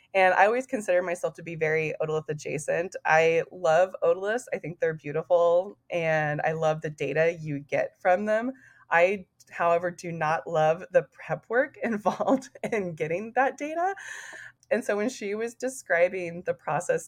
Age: 20-39